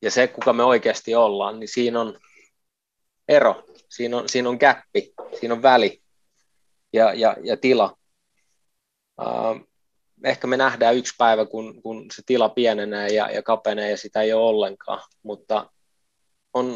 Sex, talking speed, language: male, 155 wpm, Finnish